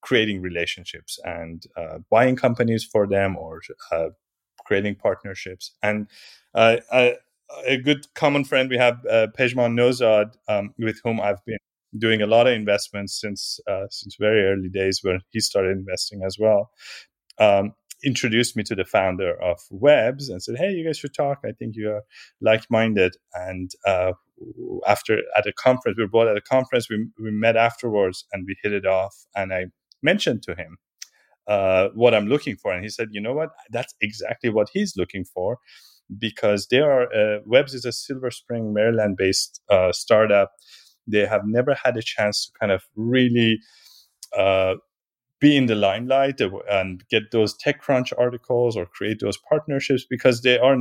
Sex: male